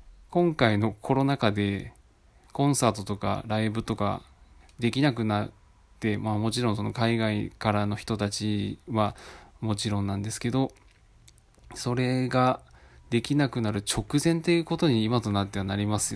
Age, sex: 20-39, male